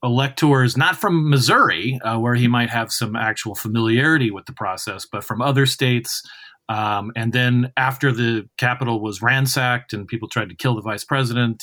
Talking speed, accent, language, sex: 180 wpm, American, English, male